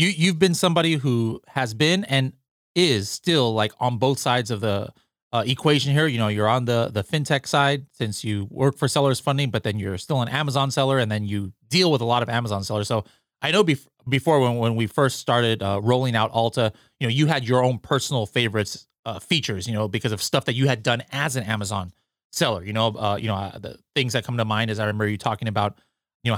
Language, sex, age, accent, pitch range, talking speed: English, male, 30-49, American, 110-140 Hz, 245 wpm